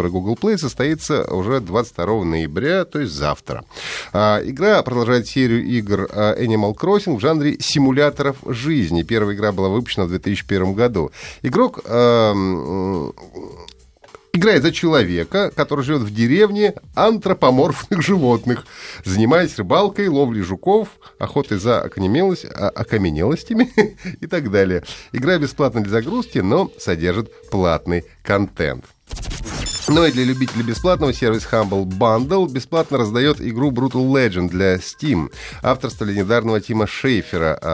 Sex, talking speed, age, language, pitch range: male, 125 wpm, 30-49, Russian, 100-145 Hz